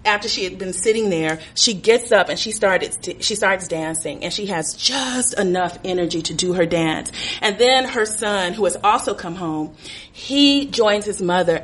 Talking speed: 200 wpm